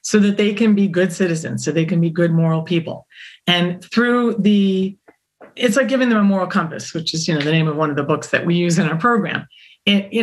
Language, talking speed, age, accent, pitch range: English, 250 wpm, 40-59, American, 165-200 Hz